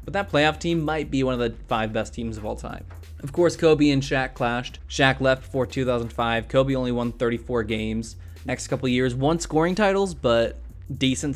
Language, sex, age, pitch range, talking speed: English, male, 20-39, 115-145 Hz, 200 wpm